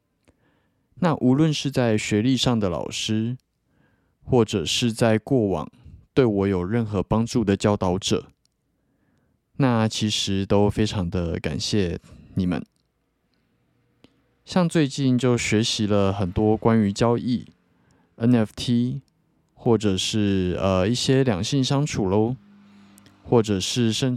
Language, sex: Chinese, male